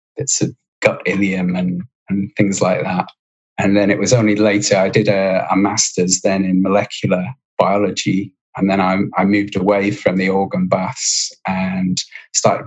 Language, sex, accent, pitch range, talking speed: English, male, British, 95-105 Hz, 170 wpm